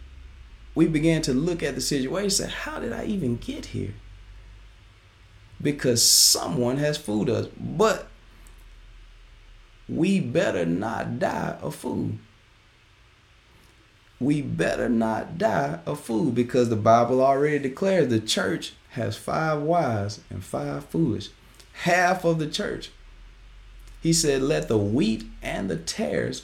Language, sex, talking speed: English, male, 130 wpm